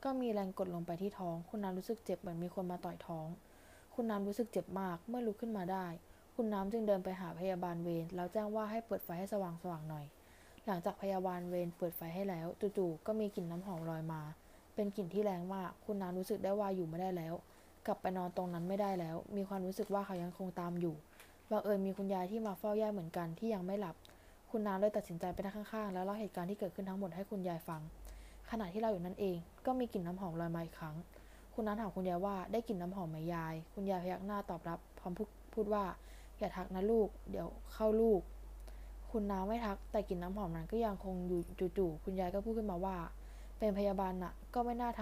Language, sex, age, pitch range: Thai, female, 20-39, 175-210 Hz